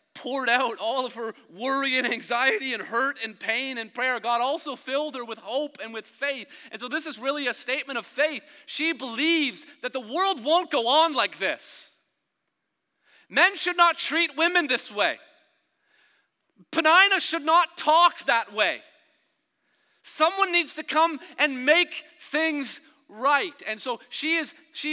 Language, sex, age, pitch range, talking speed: English, male, 40-59, 230-320 Hz, 160 wpm